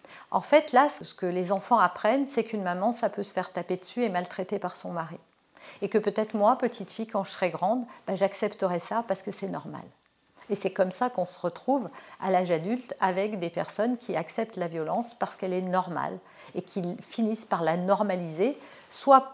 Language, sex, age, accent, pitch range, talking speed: French, female, 50-69, French, 190-270 Hz, 210 wpm